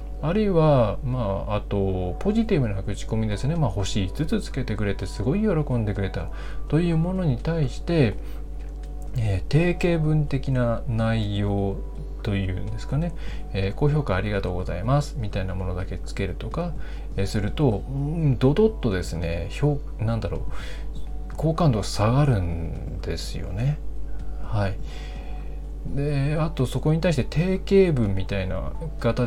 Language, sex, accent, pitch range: Japanese, male, native, 95-150 Hz